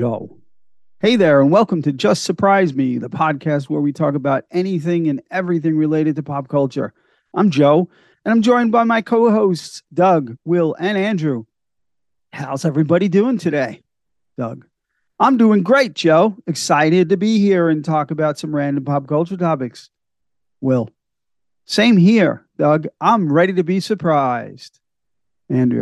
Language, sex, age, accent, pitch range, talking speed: English, male, 40-59, American, 135-185 Hz, 155 wpm